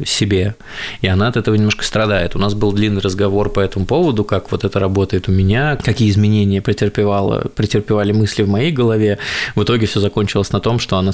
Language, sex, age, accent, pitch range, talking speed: Russian, male, 20-39, native, 100-120 Hz, 200 wpm